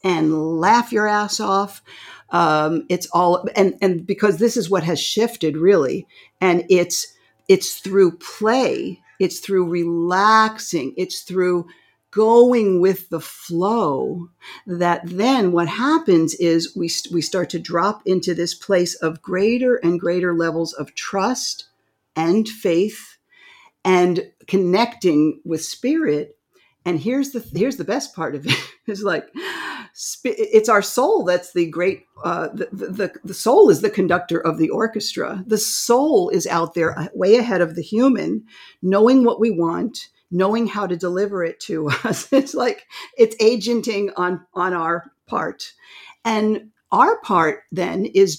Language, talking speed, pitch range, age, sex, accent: English, 150 wpm, 170-220 Hz, 50-69, female, American